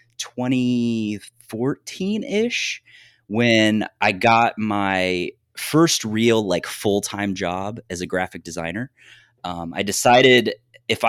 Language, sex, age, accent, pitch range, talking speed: English, male, 20-39, American, 95-120 Hz, 110 wpm